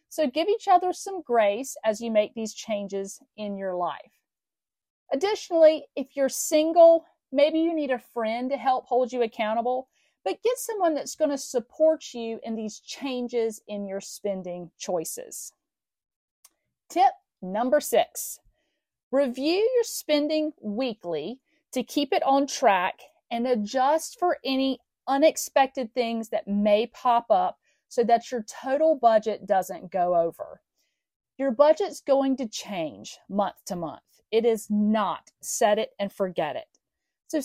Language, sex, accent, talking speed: English, female, American, 145 wpm